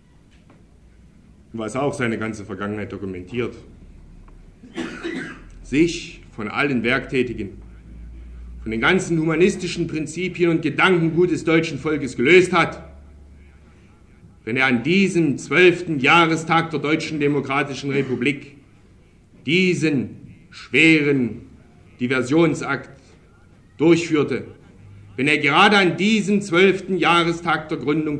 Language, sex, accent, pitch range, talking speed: German, male, German, 115-175 Hz, 95 wpm